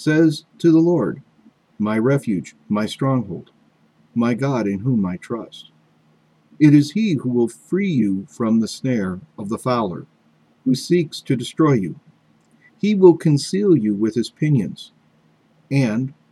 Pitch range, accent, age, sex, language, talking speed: 95-145 Hz, American, 50-69, male, English, 145 wpm